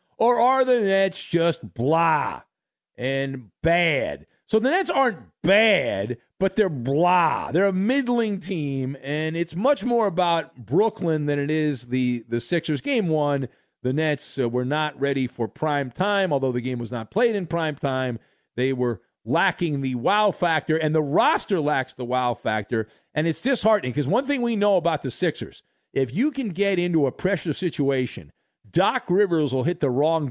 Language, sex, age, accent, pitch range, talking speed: English, male, 50-69, American, 140-205 Hz, 180 wpm